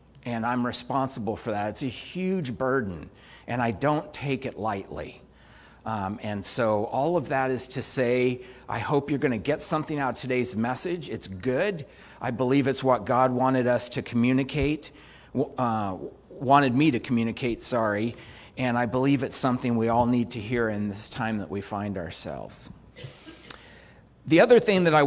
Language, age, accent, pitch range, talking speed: English, 40-59, American, 115-145 Hz, 175 wpm